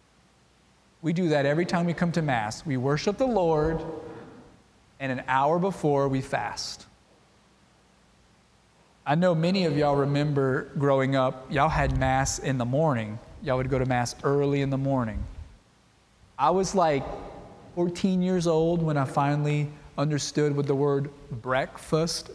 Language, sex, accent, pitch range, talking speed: English, male, American, 125-165 Hz, 150 wpm